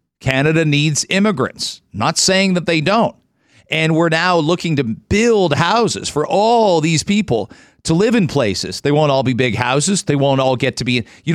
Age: 50-69